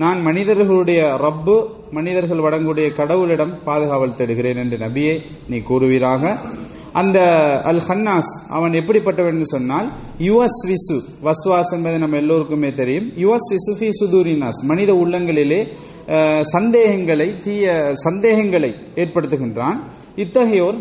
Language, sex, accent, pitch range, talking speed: English, male, Indian, 135-175 Hz, 90 wpm